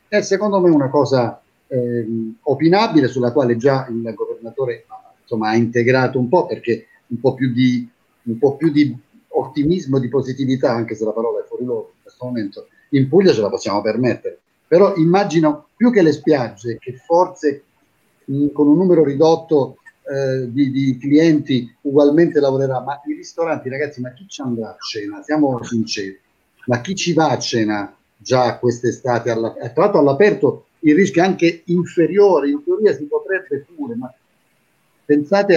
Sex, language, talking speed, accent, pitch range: male, Italian, 165 wpm, native, 130-210 Hz